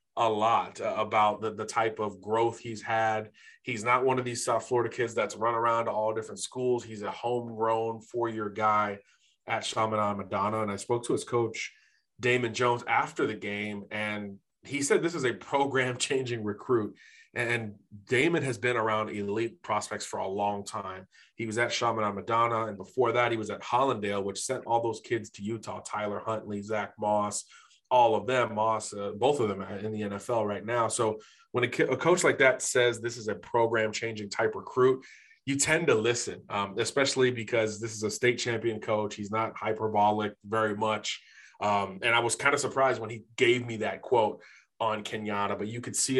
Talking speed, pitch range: 195 wpm, 105-120 Hz